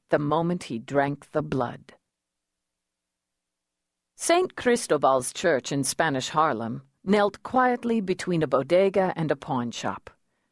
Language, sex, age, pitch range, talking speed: English, female, 50-69, 125-185 Hz, 120 wpm